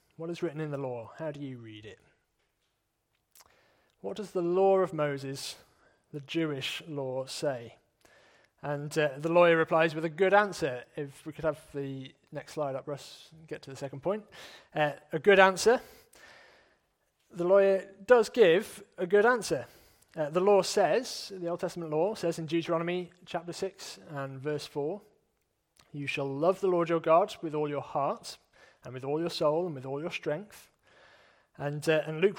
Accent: British